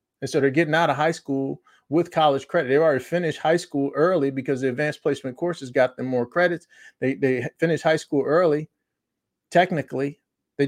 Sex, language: male, English